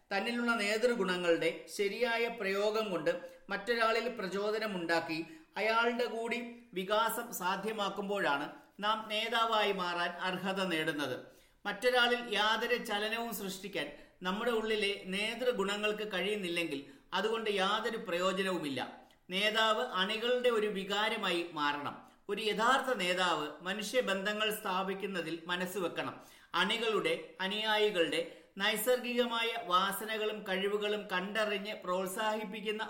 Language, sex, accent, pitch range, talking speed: Malayalam, male, native, 180-220 Hz, 85 wpm